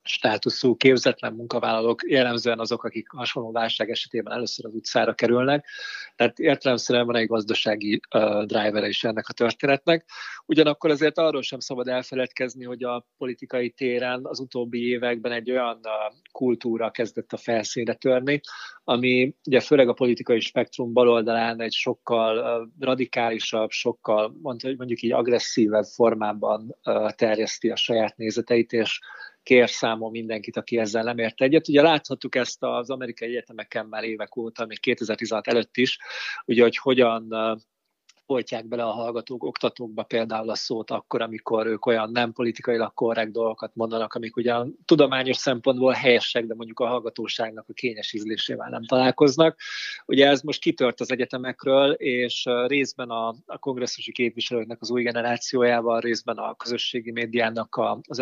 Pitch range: 115-130 Hz